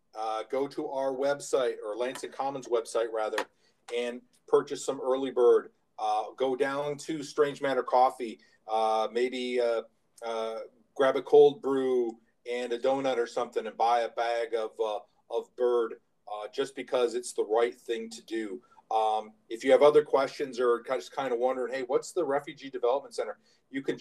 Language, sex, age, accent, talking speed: English, male, 40-59, American, 175 wpm